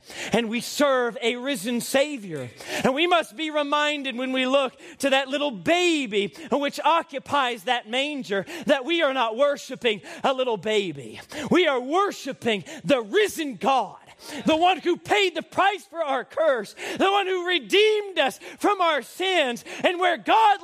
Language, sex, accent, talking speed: English, male, American, 165 wpm